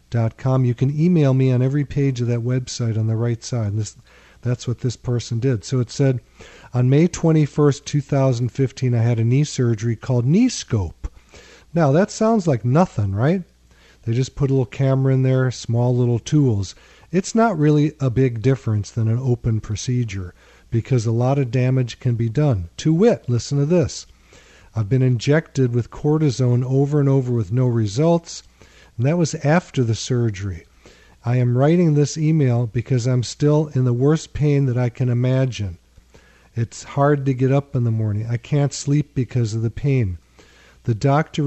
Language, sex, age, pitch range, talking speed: English, male, 50-69, 115-145 Hz, 180 wpm